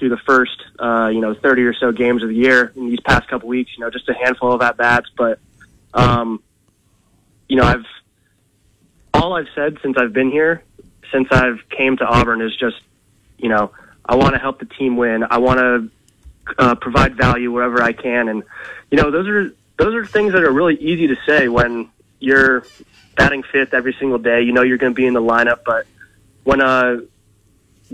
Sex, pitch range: male, 120-135 Hz